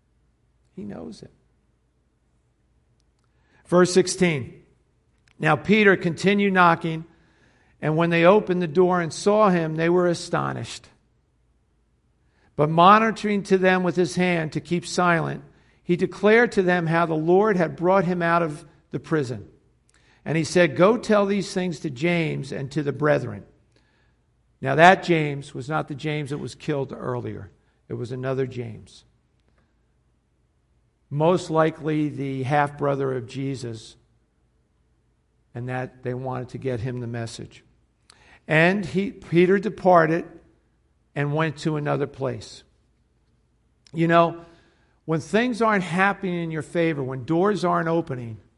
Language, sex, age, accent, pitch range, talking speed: English, male, 50-69, American, 135-180 Hz, 135 wpm